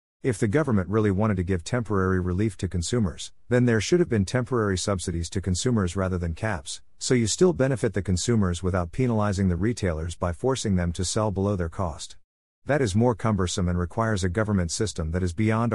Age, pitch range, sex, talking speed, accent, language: 50-69, 90-110 Hz, male, 200 wpm, American, English